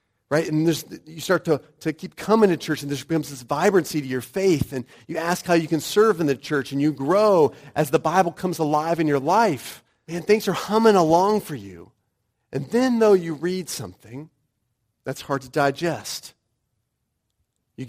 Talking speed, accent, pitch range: 190 wpm, American, 115-165 Hz